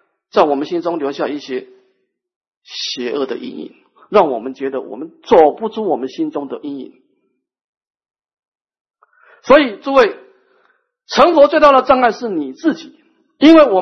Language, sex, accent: Chinese, male, native